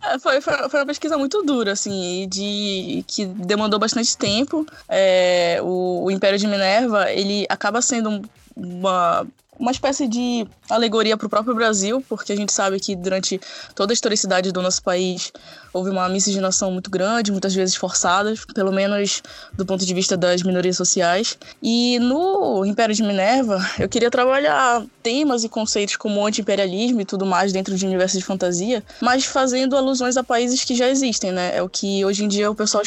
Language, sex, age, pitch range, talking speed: Portuguese, female, 10-29, 190-230 Hz, 180 wpm